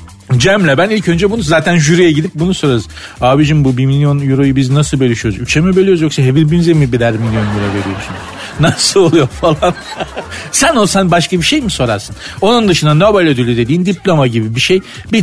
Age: 50-69